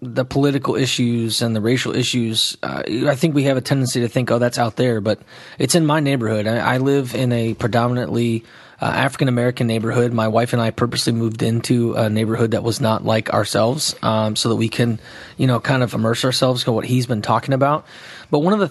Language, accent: English, American